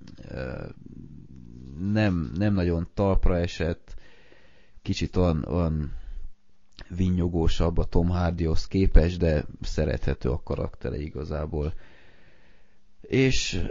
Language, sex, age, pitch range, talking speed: Hungarian, male, 20-39, 80-100 Hz, 85 wpm